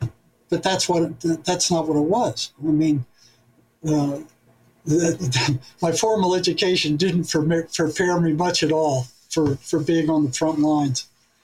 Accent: American